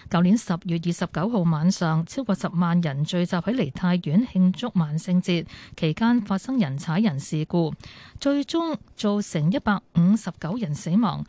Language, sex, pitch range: Chinese, female, 165-210 Hz